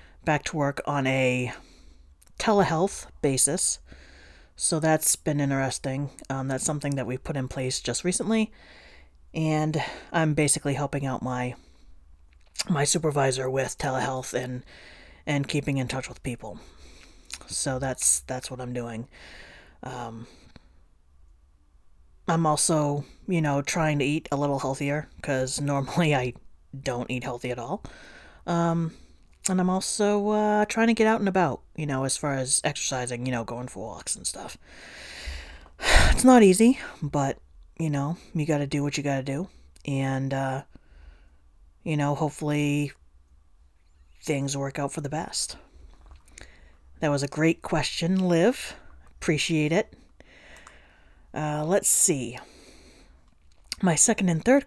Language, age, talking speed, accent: English, 30-49, 140 wpm, American